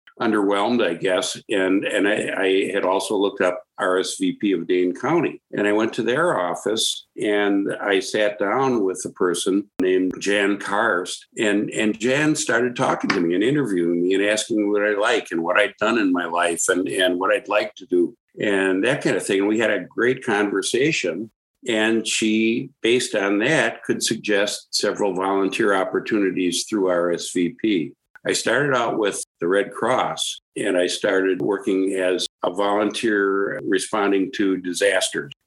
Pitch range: 90-105 Hz